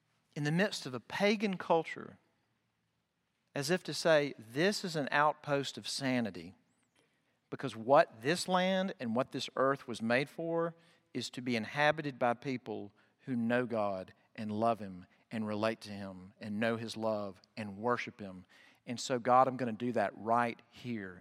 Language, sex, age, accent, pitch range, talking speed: English, male, 50-69, American, 115-140 Hz, 175 wpm